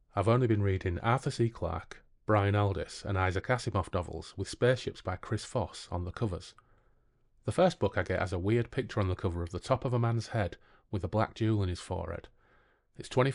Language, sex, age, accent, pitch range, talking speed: English, male, 30-49, British, 95-110 Hz, 215 wpm